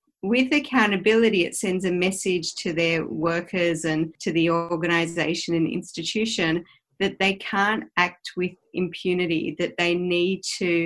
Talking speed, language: 140 wpm, English